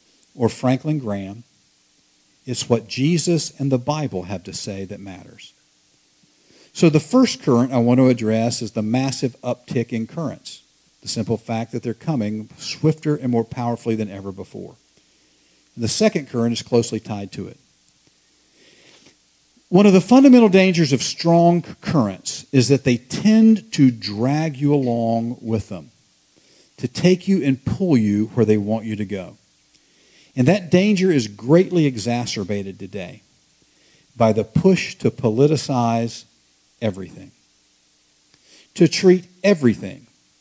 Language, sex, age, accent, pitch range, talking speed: English, male, 50-69, American, 105-150 Hz, 140 wpm